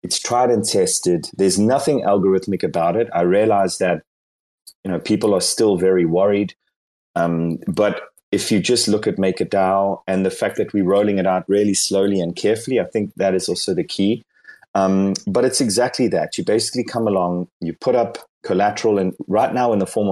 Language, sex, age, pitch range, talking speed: English, male, 30-49, 90-105 Hz, 195 wpm